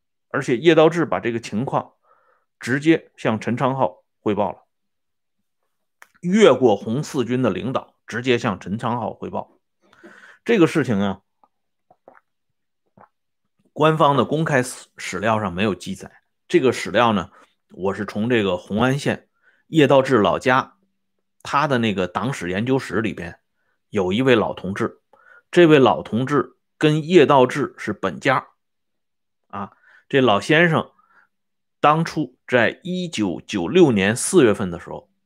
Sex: male